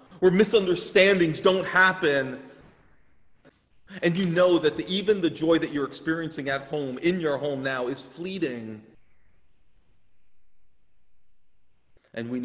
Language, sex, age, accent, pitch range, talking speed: English, male, 40-59, American, 115-185 Hz, 120 wpm